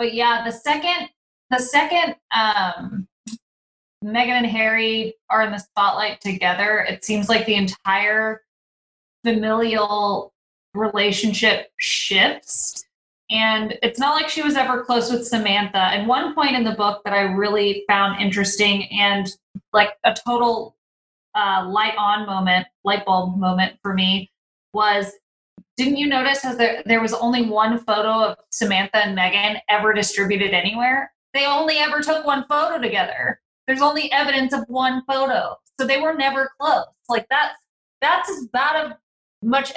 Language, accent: English, American